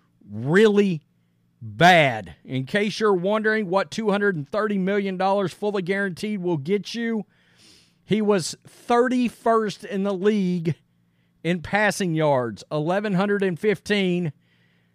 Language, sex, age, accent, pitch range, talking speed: English, male, 40-59, American, 140-205 Hz, 95 wpm